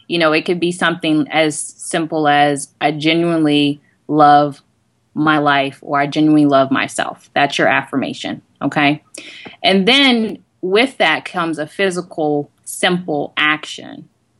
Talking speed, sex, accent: 135 wpm, female, American